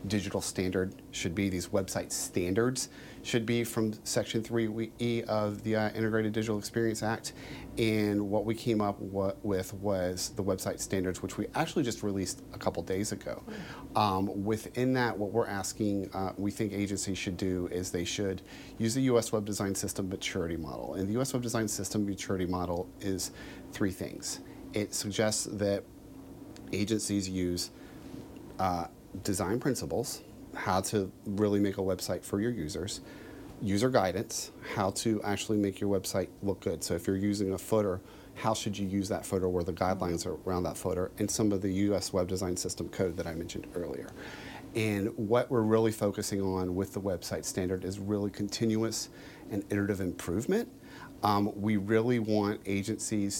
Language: English